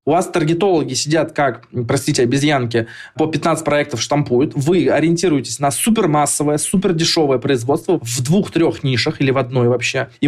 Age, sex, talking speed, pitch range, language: 20-39, male, 145 wpm, 130-165 Hz, Russian